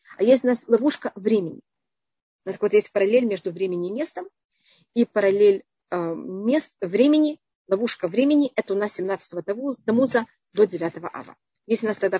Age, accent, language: 40-59, native, Russian